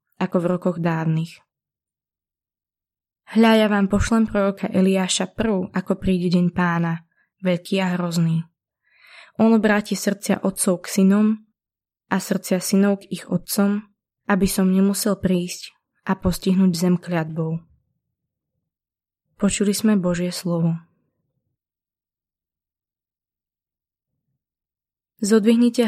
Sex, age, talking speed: female, 20-39, 100 wpm